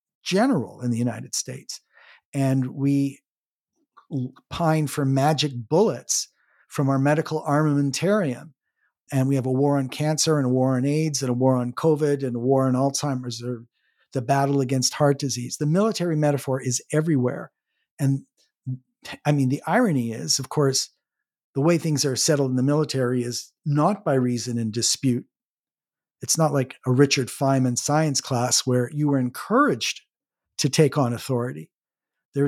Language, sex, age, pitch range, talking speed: English, male, 50-69, 130-160 Hz, 160 wpm